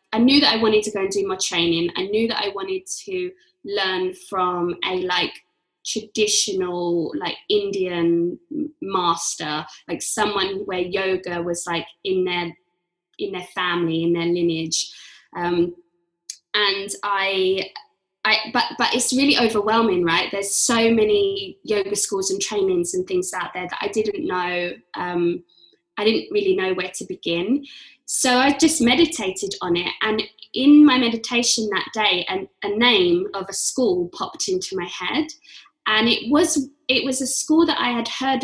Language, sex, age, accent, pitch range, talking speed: English, female, 20-39, British, 190-265 Hz, 160 wpm